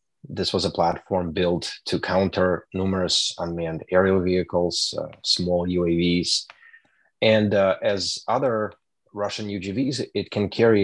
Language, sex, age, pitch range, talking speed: English, male, 30-49, 85-100 Hz, 125 wpm